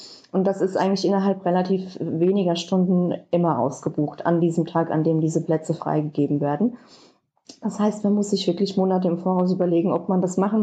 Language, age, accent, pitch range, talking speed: German, 20-39, German, 175-200 Hz, 185 wpm